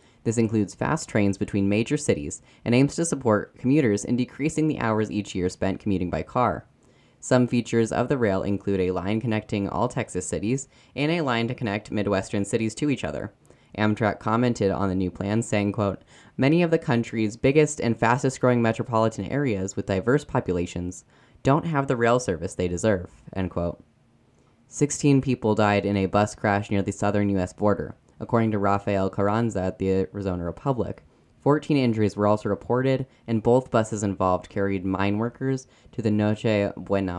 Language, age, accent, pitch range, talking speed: English, 10-29, American, 95-120 Hz, 175 wpm